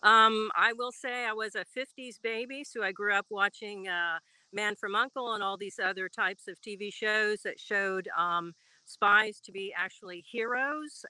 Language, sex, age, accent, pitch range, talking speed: English, female, 50-69, American, 185-220 Hz, 185 wpm